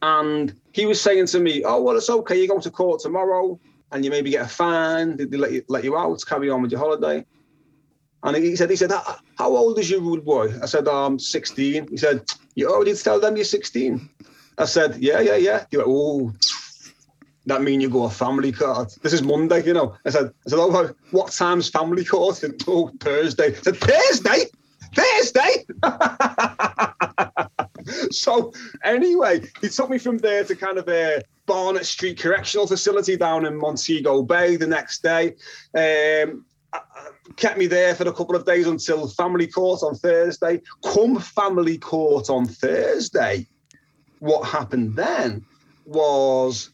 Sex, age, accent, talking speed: male, 30-49, British, 180 wpm